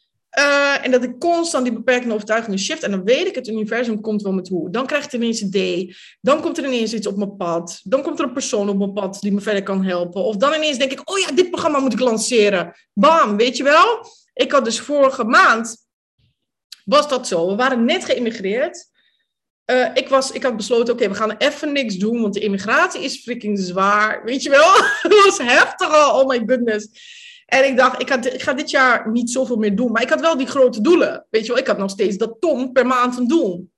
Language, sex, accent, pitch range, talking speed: Dutch, female, Dutch, 220-300 Hz, 235 wpm